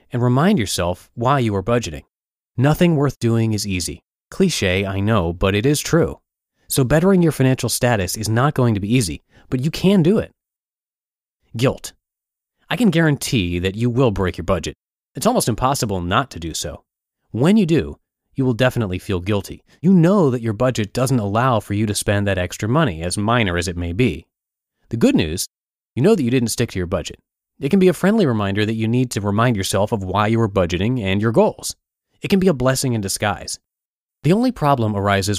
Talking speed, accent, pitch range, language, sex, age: 210 wpm, American, 95-135 Hz, English, male, 30-49